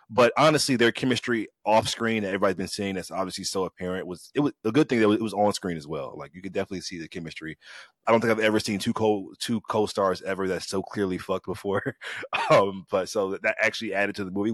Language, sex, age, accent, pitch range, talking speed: English, male, 20-39, American, 90-110 Hz, 245 wpm